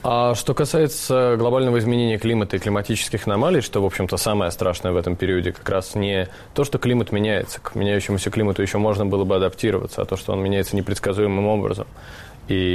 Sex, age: male, 20-39